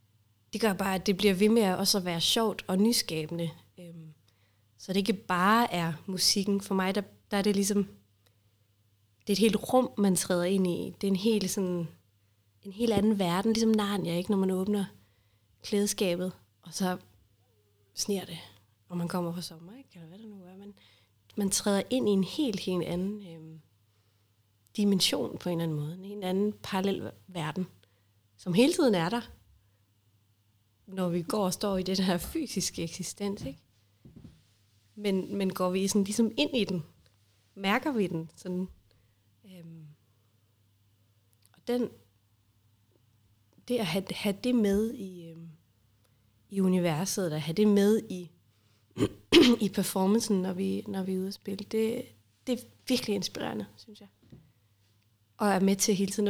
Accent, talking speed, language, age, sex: native, 165 wpm, Danish, 30-49, female